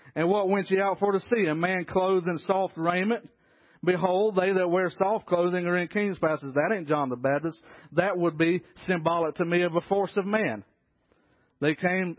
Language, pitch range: English, 165-195 Hz